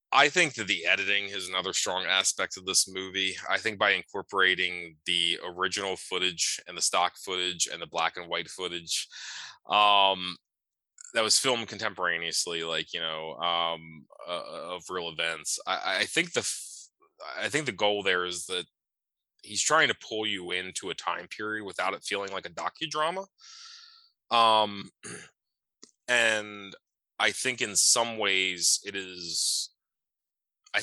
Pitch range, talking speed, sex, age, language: 90-110 Hz, 155 wpm, male, 20-39, English